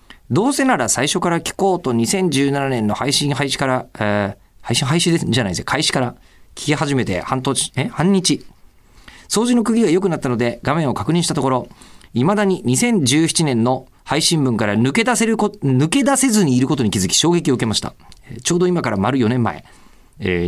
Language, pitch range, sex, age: Japanese, 115-160 Hz, male, 40-59